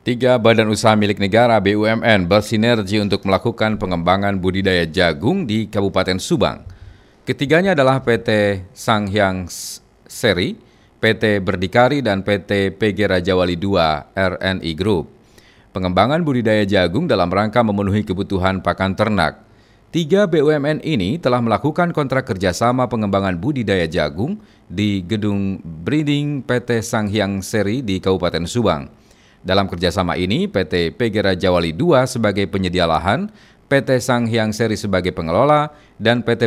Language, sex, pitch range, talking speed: Indonesian, male, 95-120 Hz, 130 wpm